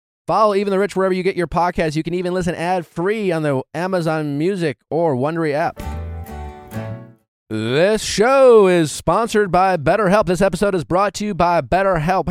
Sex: male